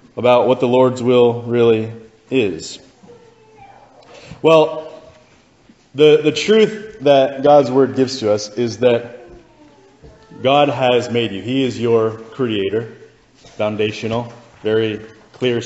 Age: 30-49